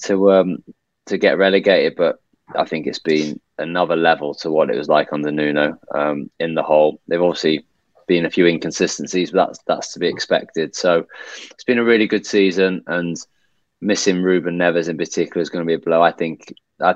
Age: 20-39